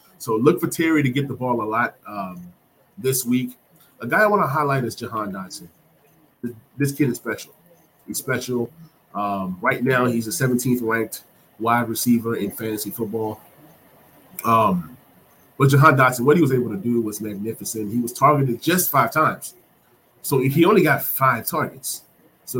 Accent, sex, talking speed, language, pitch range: American, male, 170 wpm, English, 115-140 Hz